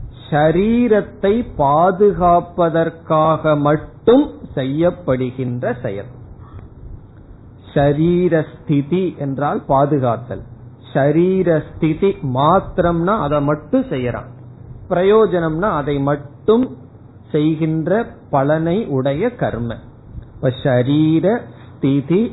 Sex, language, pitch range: male, Tamil, 120-170 Hz